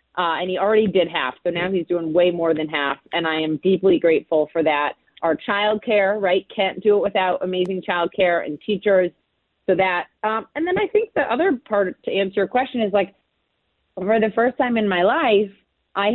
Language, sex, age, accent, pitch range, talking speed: English, female, 30-49, American, 180-225 Hz, 210 wpm